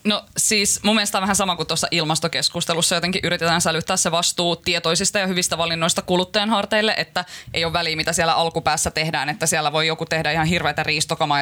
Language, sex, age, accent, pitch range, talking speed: Finnish, female, 20-39, native, 160-200 Hz, 195 wpm